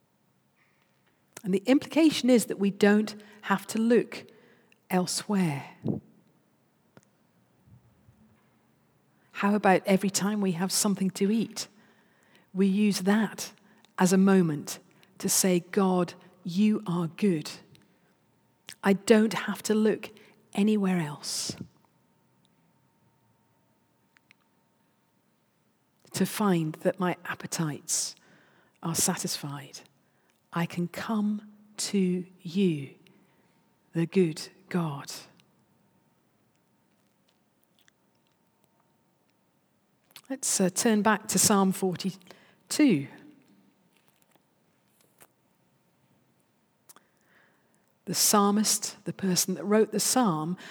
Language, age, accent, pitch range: English, 40-59, British, 180-220 Hz